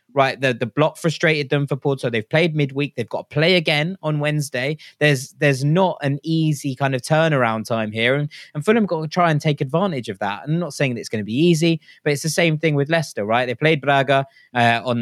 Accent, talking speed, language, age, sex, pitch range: British, 250 wpm, English, 20-39, male, 125-160 Hz